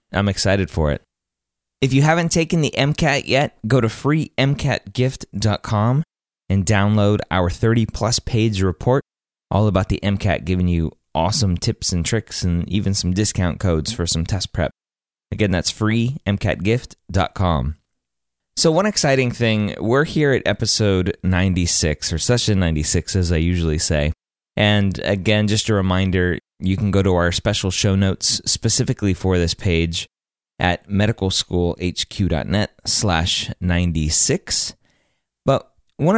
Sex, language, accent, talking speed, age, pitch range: male, English, American, 135 wpm, 20-39, 90-115 Hz